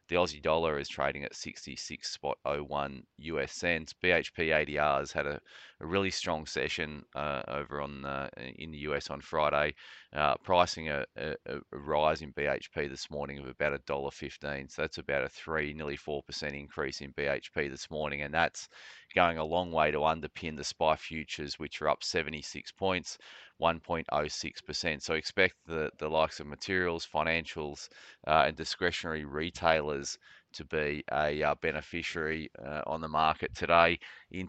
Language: English